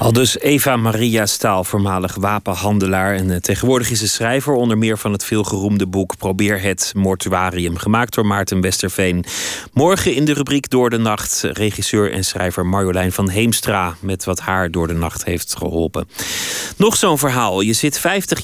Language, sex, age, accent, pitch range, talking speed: Dutch, male, 30-49, Dutch, 100-125 Hz, 170 wpm